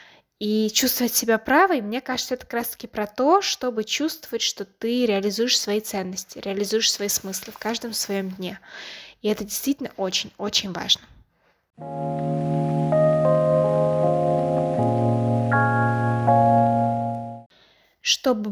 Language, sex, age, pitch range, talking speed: English, female, 20-39, 205-265 Hz, 100 wpm